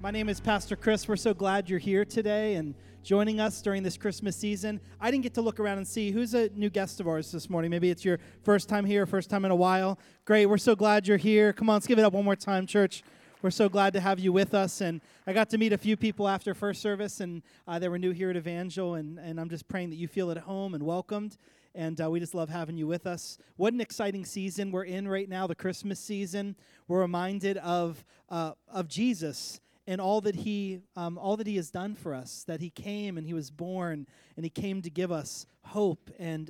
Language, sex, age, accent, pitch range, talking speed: English, male, 30-49, American, 175-210 Hz, 250 wpm